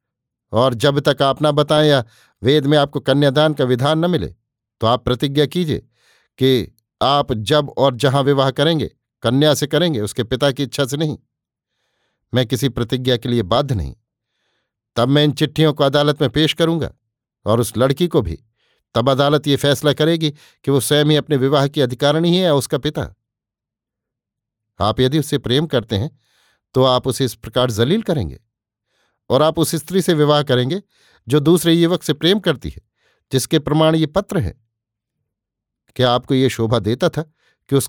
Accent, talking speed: native, 175 wpm